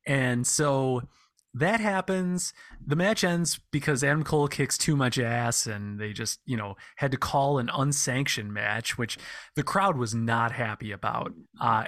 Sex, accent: male, American